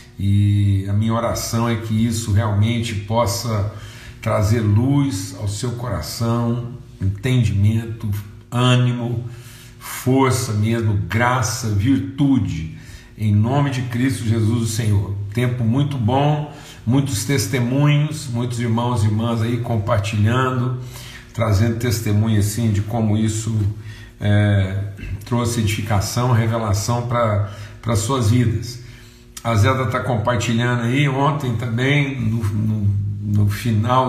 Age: 50-69